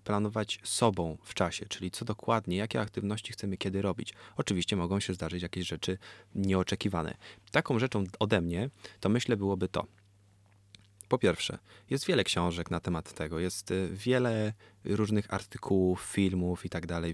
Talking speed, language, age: 150 wpm, Polish, 20-39